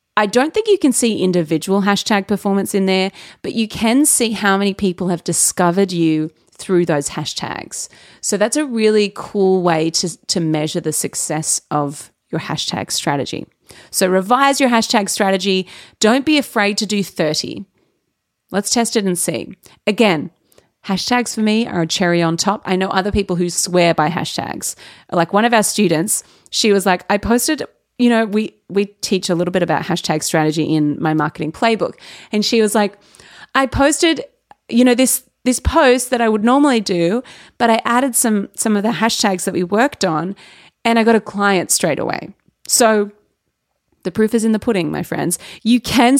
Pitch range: 175-225 Hz